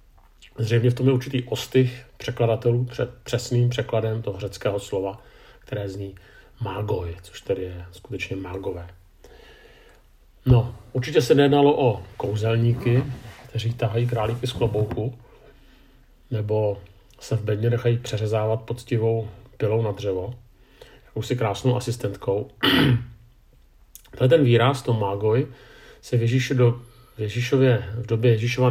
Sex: male